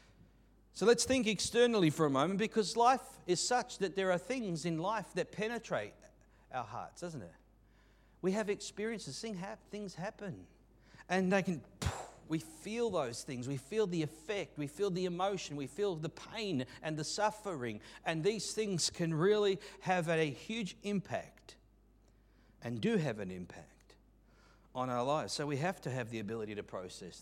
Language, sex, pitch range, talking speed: English, male, 110-175 Hz, 170 wpm